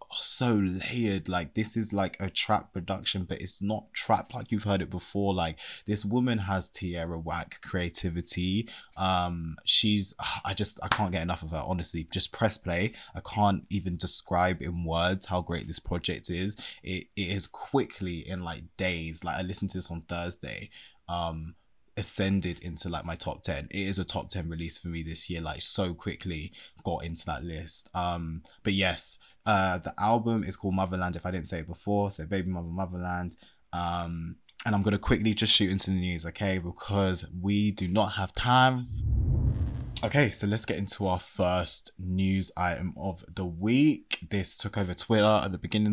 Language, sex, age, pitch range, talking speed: English, male, 20-39, 85-100 Hz, 185 wpm